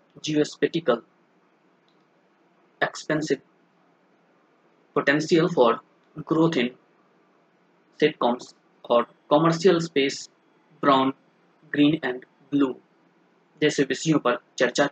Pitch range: 135-165 Hz